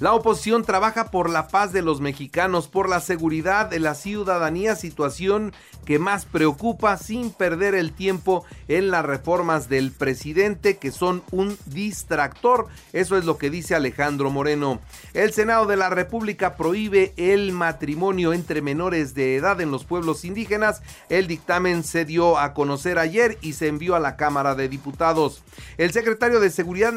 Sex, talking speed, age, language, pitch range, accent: male, 165 wpm, 40-59, Spanish, 150-200 Hz, Mexican